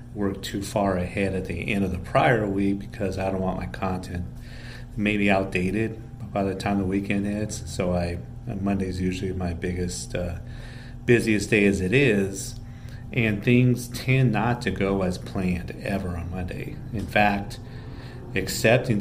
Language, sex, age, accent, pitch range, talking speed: English, male, 40-59, American, 95-115 Hz, 160 wpm